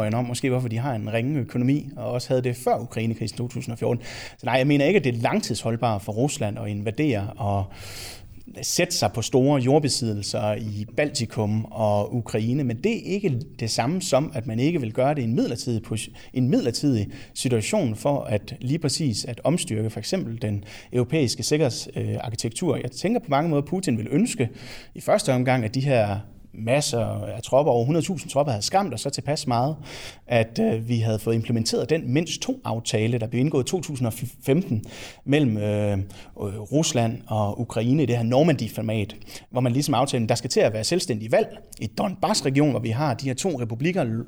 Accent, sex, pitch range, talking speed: native, male, 115-145 Hz, 190 wpm